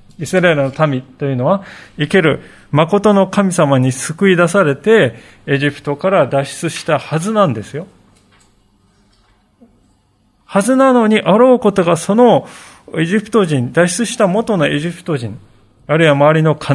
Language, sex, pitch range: Japanese, male, 125-185 Hz